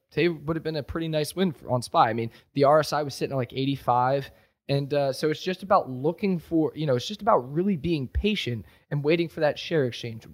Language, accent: English, American